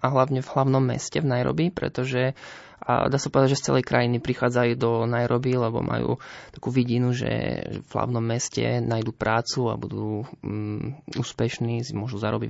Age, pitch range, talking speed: 20-39, 120-135 Hz, 170 wpm